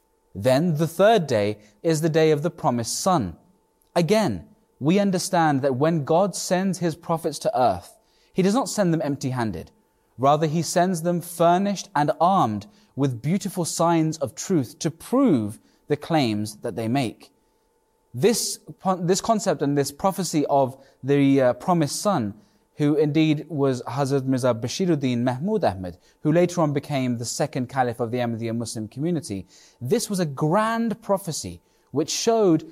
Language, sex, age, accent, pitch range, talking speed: English, male, 20-39, British, 125-175 Hz, 155 wpm